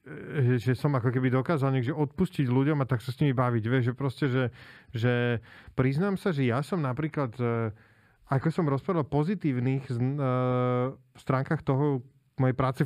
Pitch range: 125-150 Hz